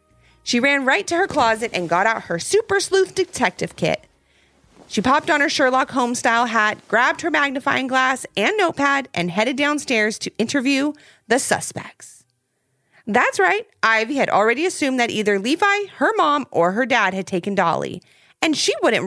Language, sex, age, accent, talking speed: English, female, 30-49, American, 175 wpm